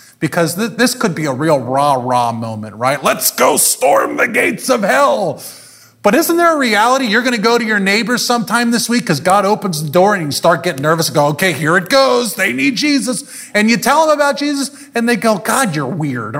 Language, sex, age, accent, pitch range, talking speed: English, male, 30-49, American, 170-260 Hz, 225 wpm